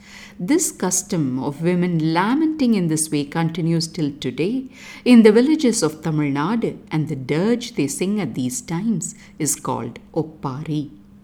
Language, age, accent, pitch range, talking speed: English, 50-69, Indian, 150-230 Hz, 150 wpm